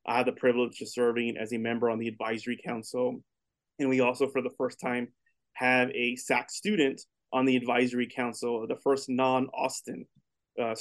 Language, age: English, 20-39